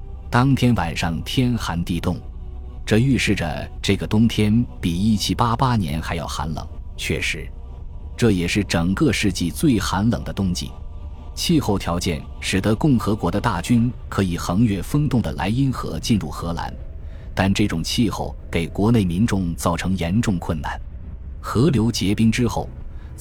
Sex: male